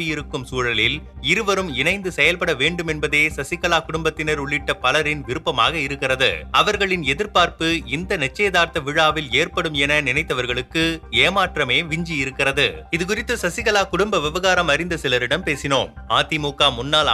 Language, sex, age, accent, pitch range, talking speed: Tamil, male, 30-49, native, 145-175 Hz, 115 wpm